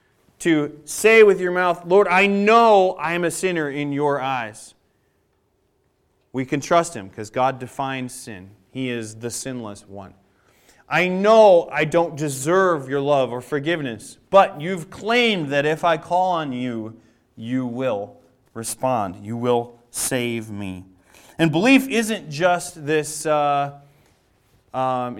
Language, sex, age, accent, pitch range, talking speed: English, male, 30-49, American, 125-160 Hz, 145 wpm